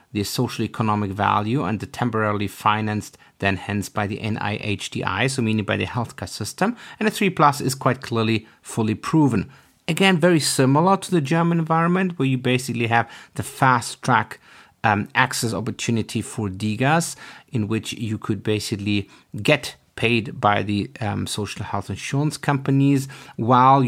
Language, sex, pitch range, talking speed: English, male, 105-130 Hz, 155 wpm